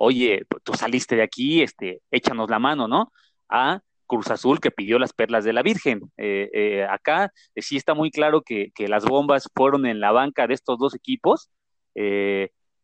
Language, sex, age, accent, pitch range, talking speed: English, male, 30-49, Mexican, 110-140 Hz, 190 wpm